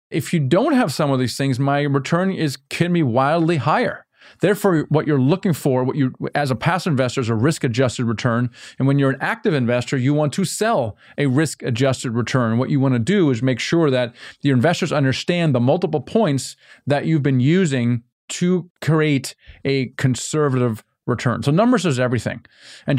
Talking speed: 190 wpm